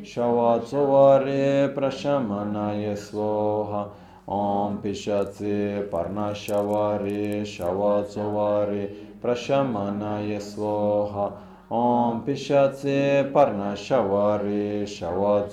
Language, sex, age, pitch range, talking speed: Italian, male, 20-39, 100-130 Hz, 45 wpm